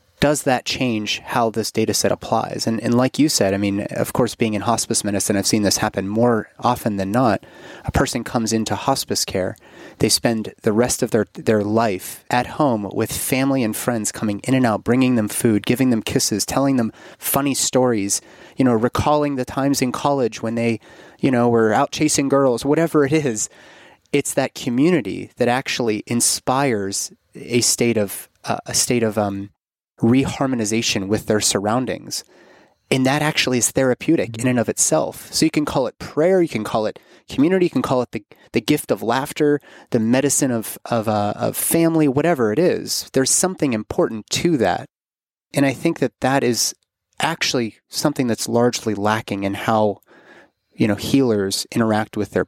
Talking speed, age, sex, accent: 185 wpm, 30-49, male, American